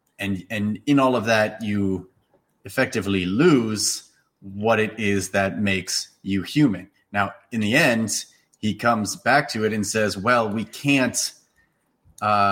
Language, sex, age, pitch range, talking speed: English, male, 30-49, 100-115 Hz, 150 wpm